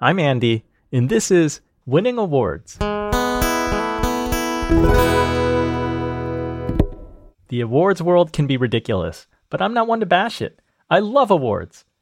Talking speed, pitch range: 115 wpm, 110-155 Hz